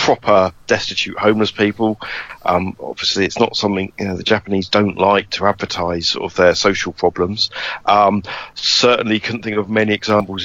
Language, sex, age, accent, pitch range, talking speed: English, male, 40-59, British, 95-115 Hz, 160 wpm